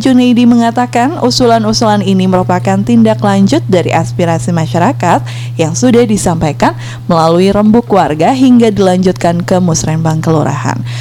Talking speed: 115 wpm